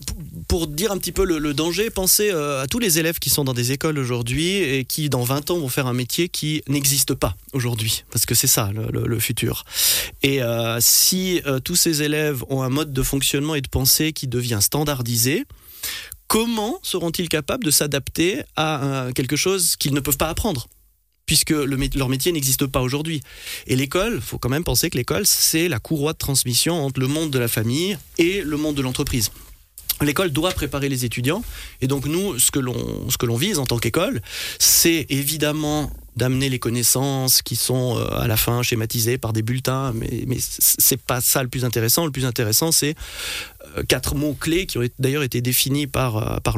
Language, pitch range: French, 120-150 Hz